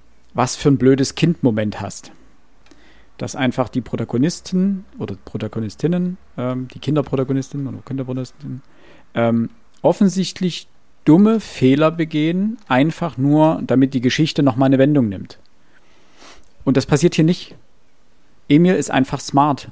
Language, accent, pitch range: German, German, 120-150 Hz